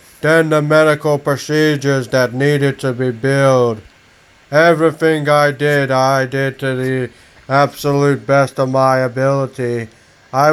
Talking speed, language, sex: 125 wpm, English, male